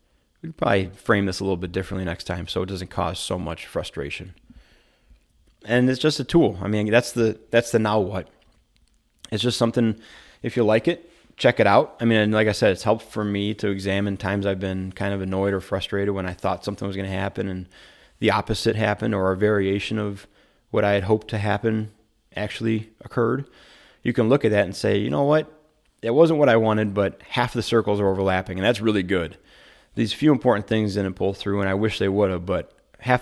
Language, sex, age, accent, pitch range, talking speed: English, male, 30-49, American, 95-115 Hz, 225 wpm